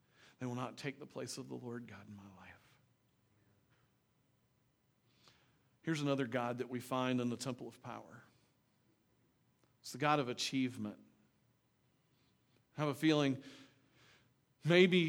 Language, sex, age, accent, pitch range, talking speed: English, male, 40-59, American, 120-150 Hz, 135 wpm